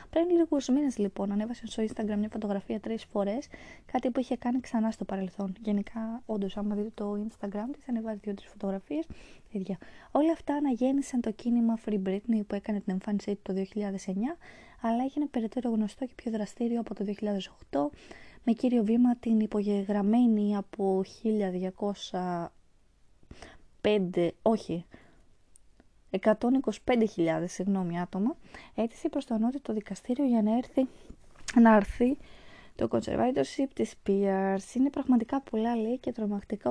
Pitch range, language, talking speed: 195-240 Hz, Greek, 135 wpm